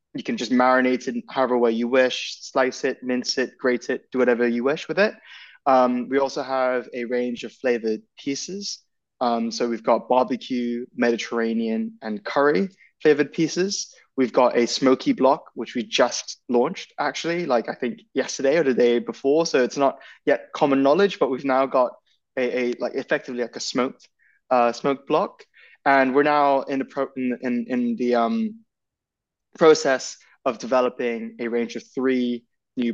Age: 20-39